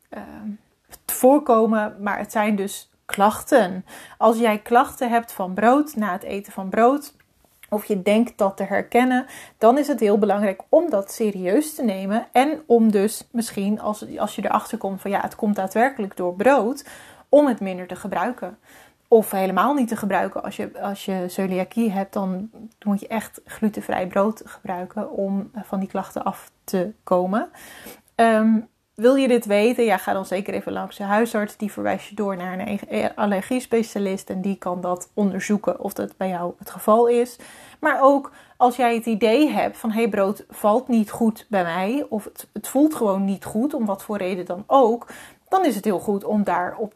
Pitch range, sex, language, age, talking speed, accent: 195-235 Hz, female, Dutch, 30-49, 185 wpm, Dutch